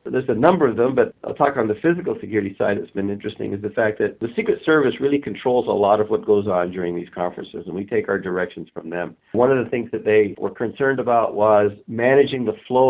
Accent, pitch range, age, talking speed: American, 95-115 Hz, 50-69, 255 wpm